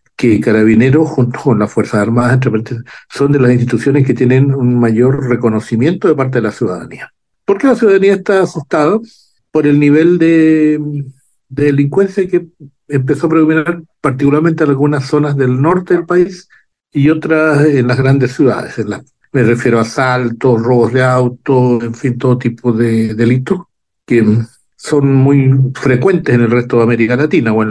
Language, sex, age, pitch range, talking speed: Spanish, male, 60-79, 115-150 Hz, 170 wpm